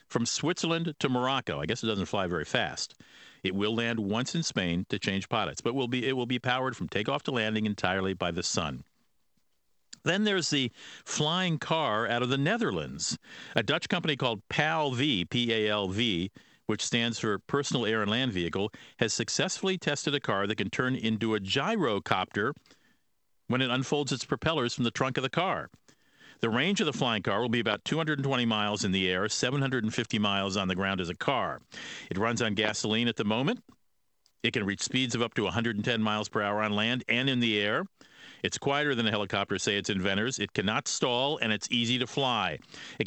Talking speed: 195 wpm